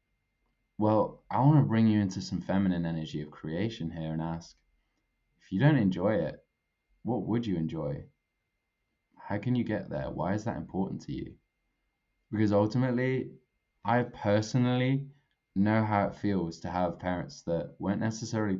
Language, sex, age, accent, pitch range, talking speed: English, male, 20-39, British, 90-115 Hz, 160 wpm